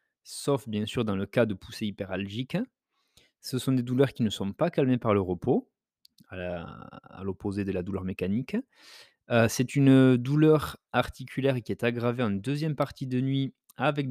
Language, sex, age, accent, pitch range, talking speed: French, male, 30-49, French, 100-135 Hz, 185 wpm